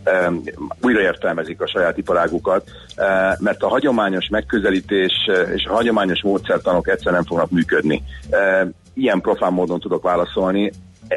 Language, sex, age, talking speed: Hungarian, male, 40-59, 120 wpm